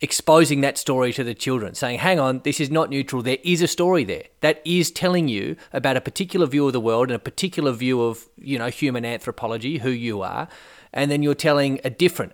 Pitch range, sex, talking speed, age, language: 125-160 Hz, male, 230 wpm, 30-49, English